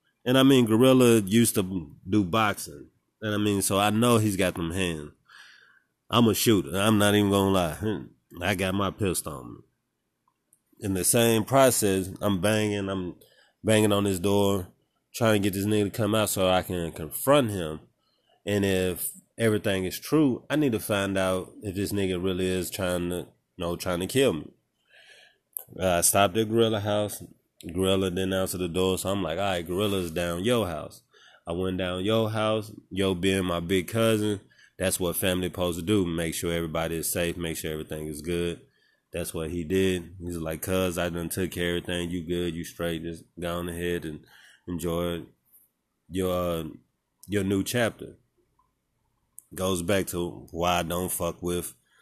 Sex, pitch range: male, 85-105 Hz